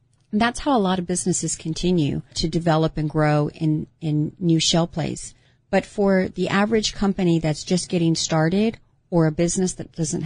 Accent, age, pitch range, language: American, 40-59, 150-175 Hz, English